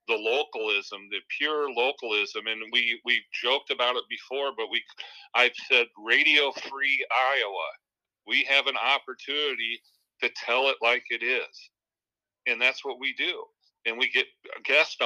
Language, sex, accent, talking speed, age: English, male, American, 150 wpm, 40-59